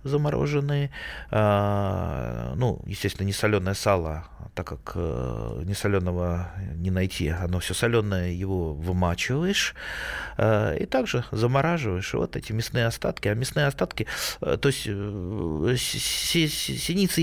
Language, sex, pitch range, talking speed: Russian, male, 90-130 Hz, 100 wpm